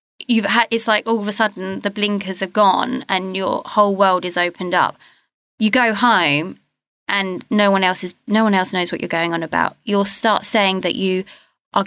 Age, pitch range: 20-39, 190-235 Hz